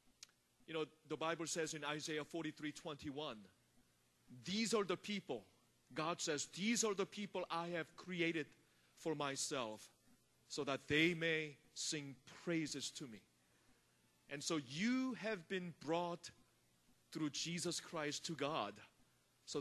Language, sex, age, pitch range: Korean, male, 40-59, 130-165 Hz